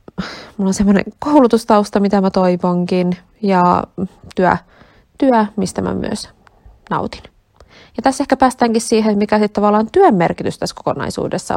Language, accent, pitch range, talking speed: Finnish, native, 180-240 Hz, 135 wpm